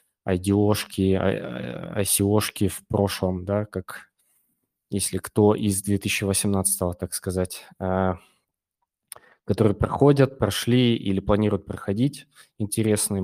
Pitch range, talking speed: 95-110 Hz, 85 wpm